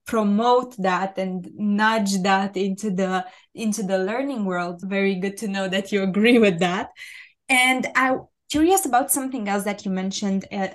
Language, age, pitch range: English, 20-39, 195-245 Hz